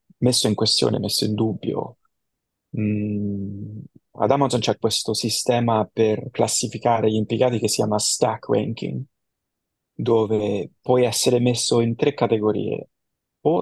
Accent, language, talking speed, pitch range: native, Italian, 130 wpm, 105-125 Hz